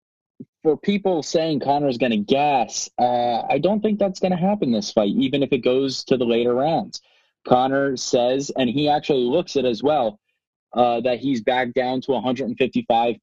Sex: male